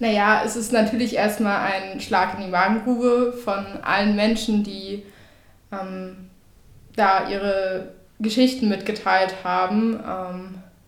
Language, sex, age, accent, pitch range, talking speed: German, female, 20-39, German, 195-220 Hz, 115 wpm